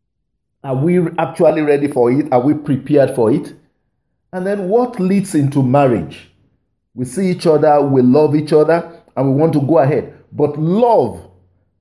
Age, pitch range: 50-69, 130-180 Hz